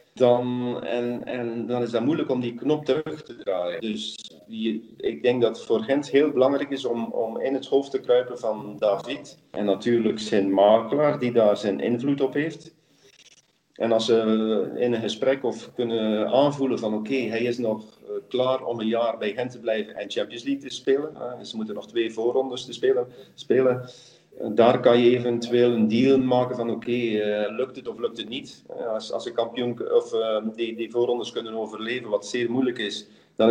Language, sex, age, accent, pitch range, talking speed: Dutch, male, 40-59, Dutch, 110-135 Hz, 195 wpm